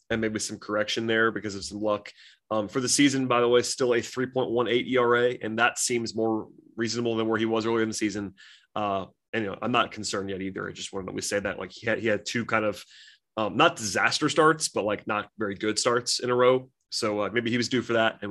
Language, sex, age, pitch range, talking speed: English, male, 20-39, 110-135 Hz, 250 wpm